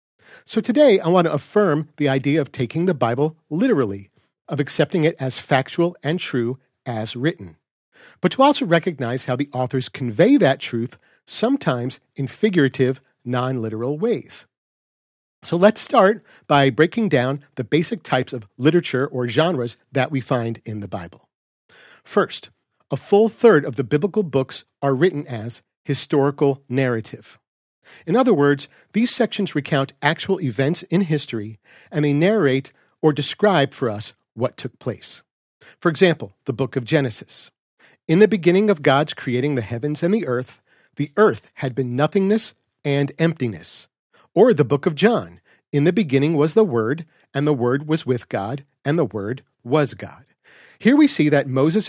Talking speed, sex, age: 160 wpm, male, 50-69